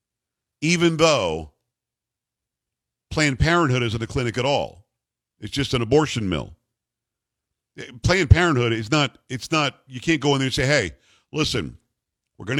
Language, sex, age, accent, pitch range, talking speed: English, male, 50-69, American, 115-140 Hz, 150 wpm